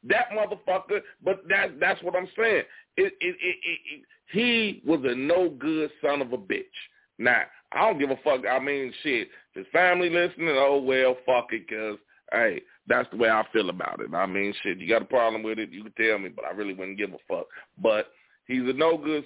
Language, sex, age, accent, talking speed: English, male, 40-59, American, 220 wpm